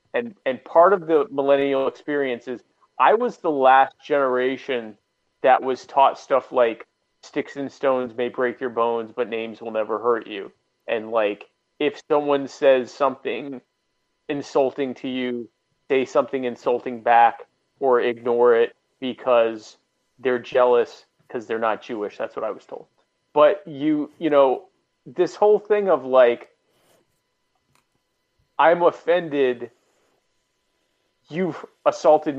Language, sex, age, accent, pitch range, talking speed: English, male, 30-49, American, 120-140 Hz, 135 wpm